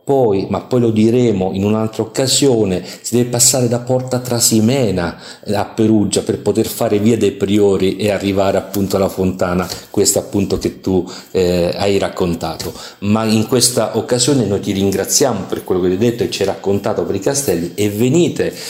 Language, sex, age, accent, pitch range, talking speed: Italian, male, 50-69, native, 95-115 Hz, 175 wpm